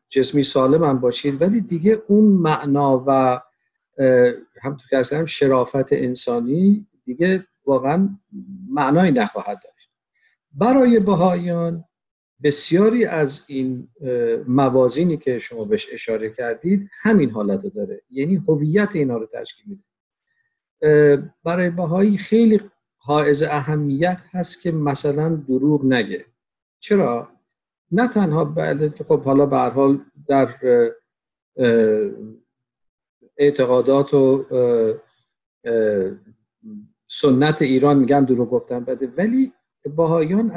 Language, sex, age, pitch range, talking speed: Persian, male, 50-69, 130-195 Hz, 95 wpm